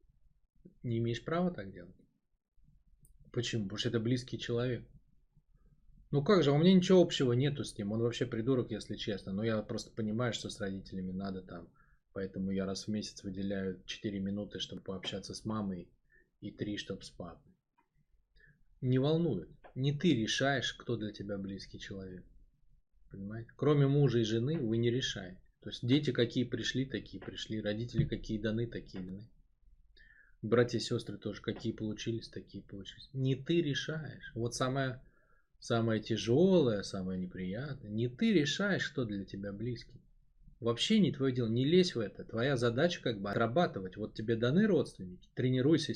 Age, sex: 20-39, male